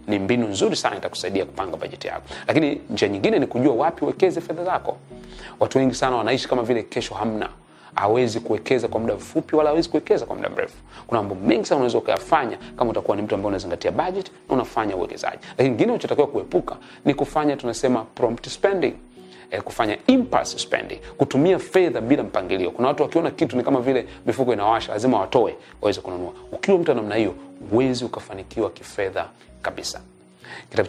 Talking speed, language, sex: 170 wpm, Swahili, male